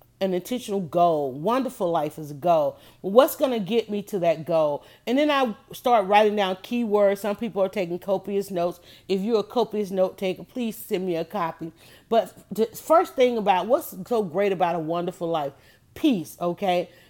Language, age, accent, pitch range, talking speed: English, 40-59, American, 180-250 Hz, 190 wpm